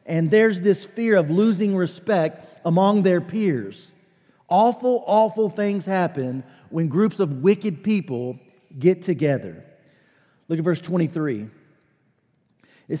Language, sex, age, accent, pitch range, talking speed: English, male, 40-59, American, 155-210 Hz, 120 wpm